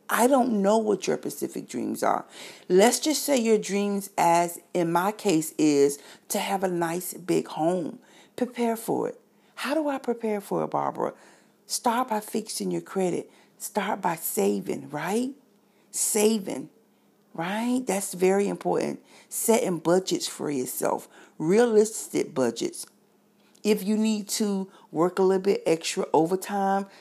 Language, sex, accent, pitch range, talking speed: English, female, American, 190-235 Hz, 140 wpm